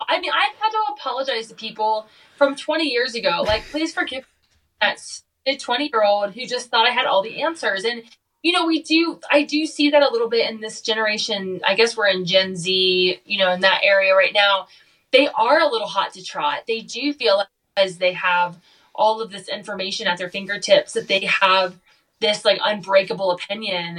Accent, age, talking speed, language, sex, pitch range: American, 20-39, 210 wpm, English, female, 190-245 Hz